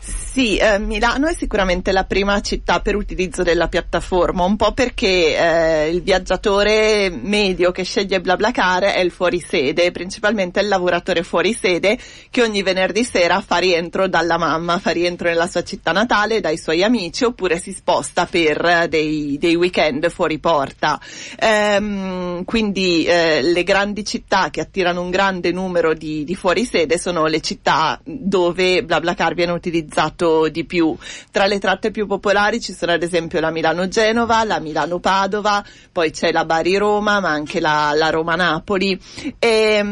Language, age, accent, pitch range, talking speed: Italian, 30-49, native, 170-205 Hz, 150 wpm